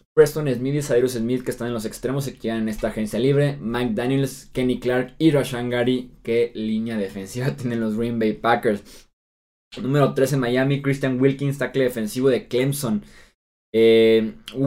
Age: 20-39